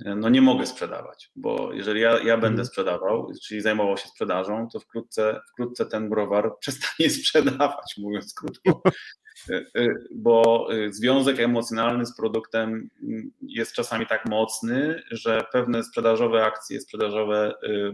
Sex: male